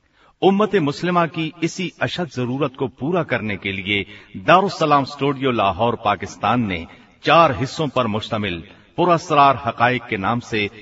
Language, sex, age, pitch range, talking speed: Hindi, male, 50-69, 110-150 Hz, 140 wpm